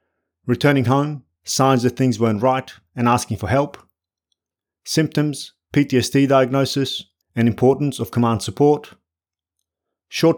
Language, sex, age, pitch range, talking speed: English, male, 30-49, 110-135 Hz, 115 wpm